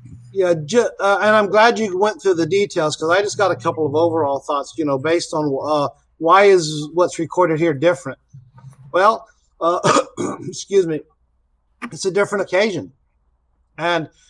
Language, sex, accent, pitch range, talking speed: English, male, American, 145-190 Hz, 165 wpm